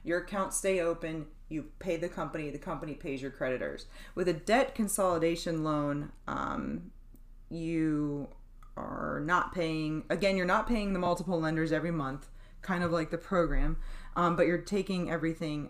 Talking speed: 160 wpm